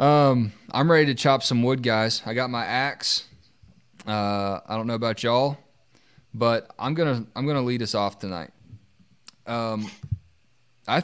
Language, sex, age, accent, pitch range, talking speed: English, male, 20-39, American, 105-130 Hz, 170 wpm